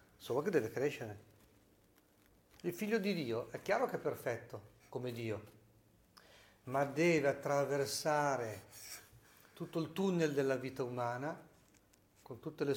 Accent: native